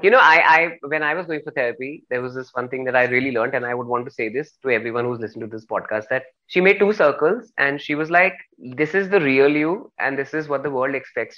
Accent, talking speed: native, 285 wpm